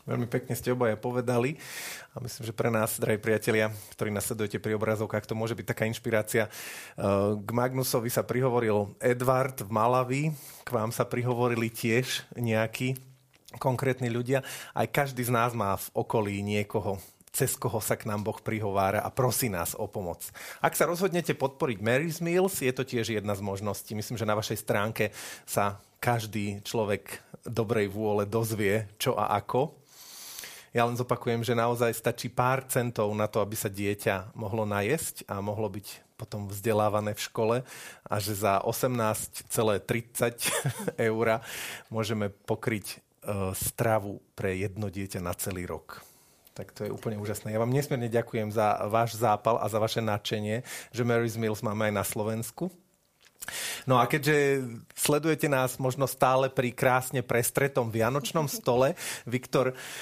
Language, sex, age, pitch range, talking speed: Slovak, male, 30-49, 105-125 Hz, 155 wpm